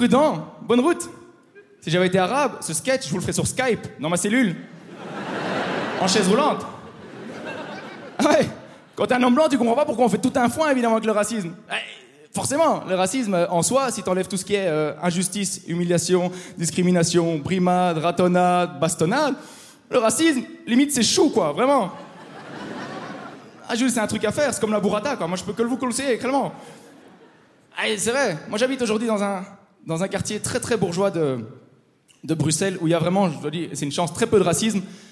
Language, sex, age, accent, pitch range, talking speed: French, male, 20-39, French, 180-240 Hz, 200 wpm